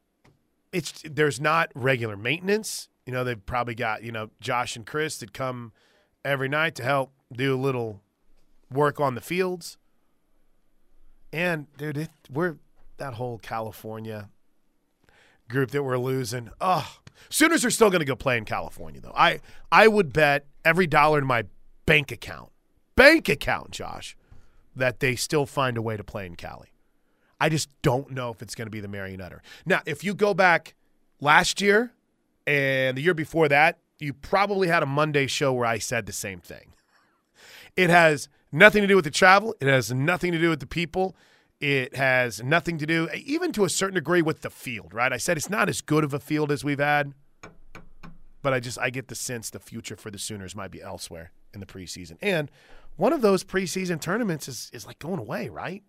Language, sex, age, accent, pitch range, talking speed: English, male, 30-49, American, 115-165 Hz, 195 wpm